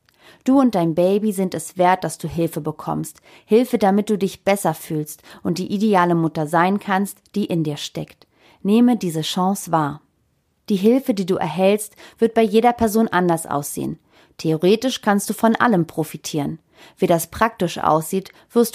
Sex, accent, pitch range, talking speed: female, German, 160-215 Hz, 170 wpm